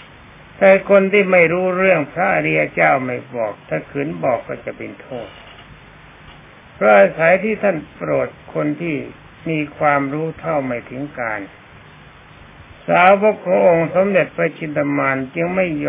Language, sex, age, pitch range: Thai, male, 60-79, 135-180 Hz